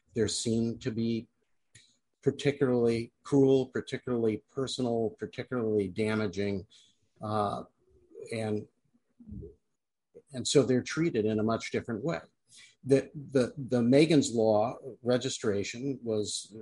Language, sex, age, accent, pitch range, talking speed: English, male, 50-69, American, 105-125 Hz, 100 wpm